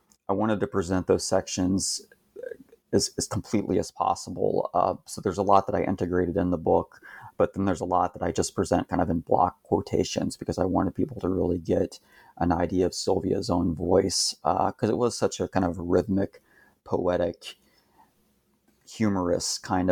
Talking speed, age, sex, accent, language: 185 wpm, 30-49, male, American, English